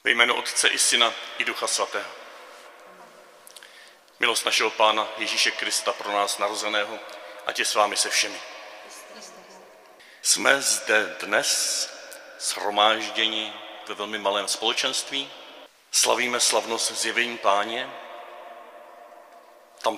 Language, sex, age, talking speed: Czech, male, 40-59, 110 wpm